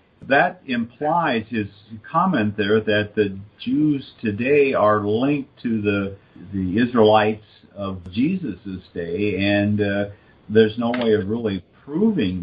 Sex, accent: male, American